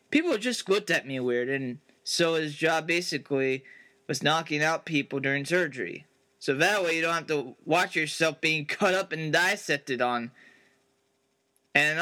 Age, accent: 20-39, American